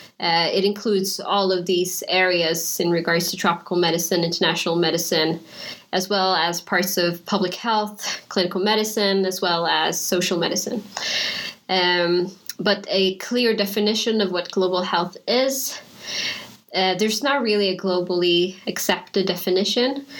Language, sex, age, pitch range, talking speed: Swedish, female, 20-39, 175-210 Hz, 135 wpm